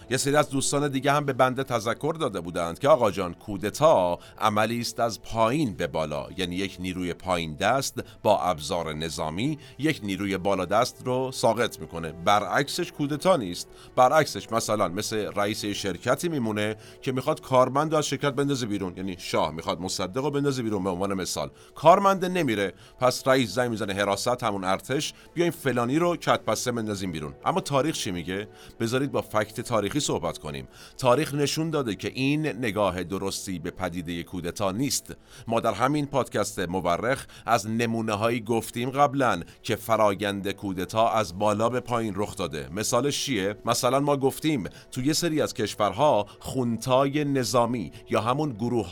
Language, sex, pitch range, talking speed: Persian, male, 100-135 Hz, 160 wpm